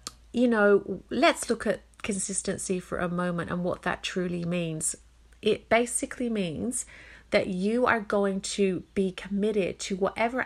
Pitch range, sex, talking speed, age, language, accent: 175-210 Hz, female, 150 wpm, 30-49, English, British